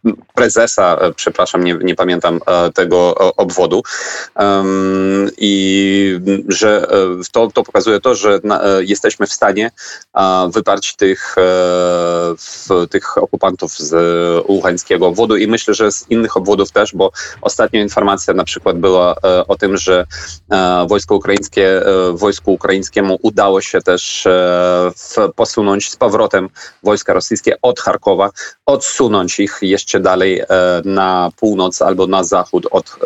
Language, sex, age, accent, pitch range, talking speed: Polish, male, 30-49, native, 90-105 Hz, 120 wpm